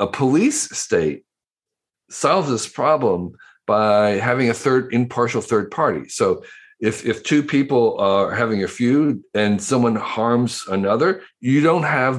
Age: 50-69